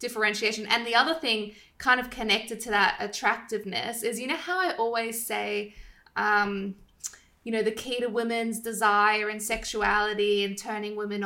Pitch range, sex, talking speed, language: 210-235 Hz, female, 165 wpm, English